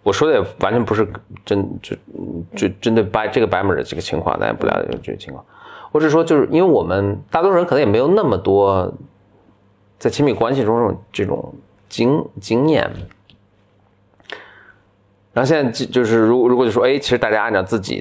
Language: Chinese